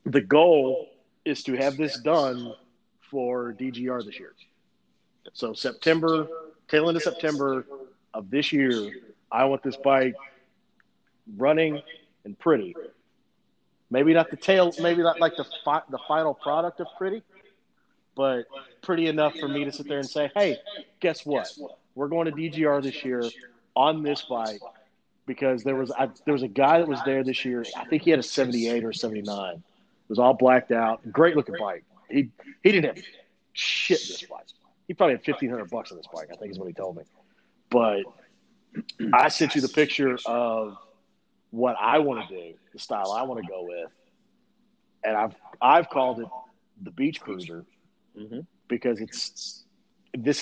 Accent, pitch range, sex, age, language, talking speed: American, 130-170 Hz, male, 40-59, English, 175 wpm